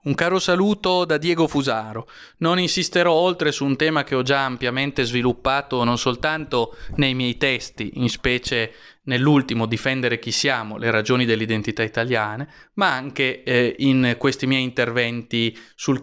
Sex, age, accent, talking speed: male, 30-49, native, 150 wpm